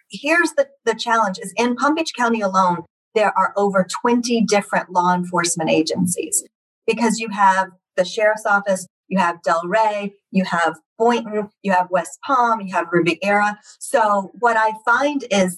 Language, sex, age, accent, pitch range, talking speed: English, female, 40-59, American, 180-235 Hz, 165 wpm